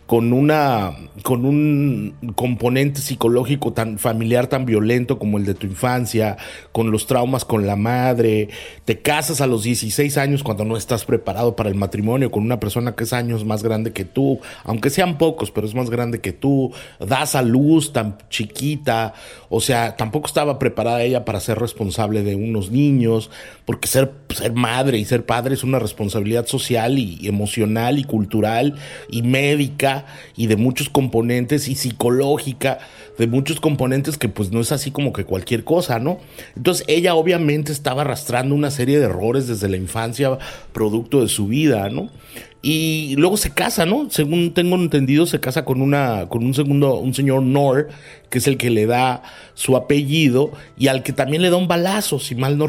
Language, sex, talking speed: Spanish, male, 180 wpm